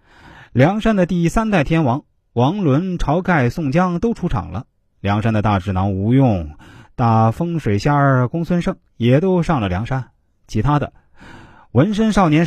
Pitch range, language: 105-165 Hz, Chinese